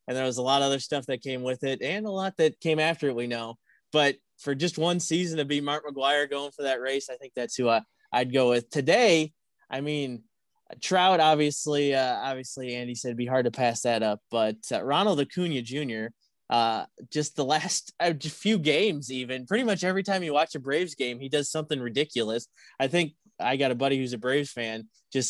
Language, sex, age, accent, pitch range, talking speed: English, male, 20-39, American, 120-150 Hz, 225 wpm